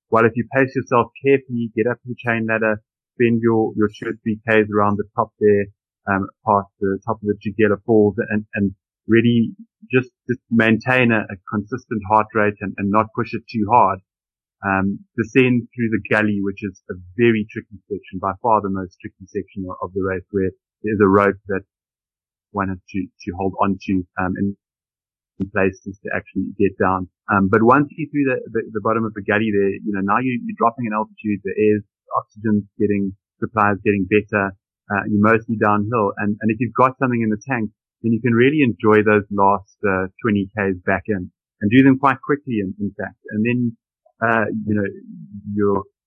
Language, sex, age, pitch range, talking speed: English, male, 30-49, 100-115 Hz, 200 wpm